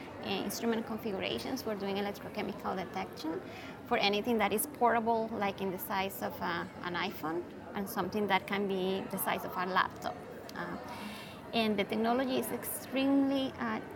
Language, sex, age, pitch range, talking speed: English, female, 20-39, 200-240 Hz, 150 wpm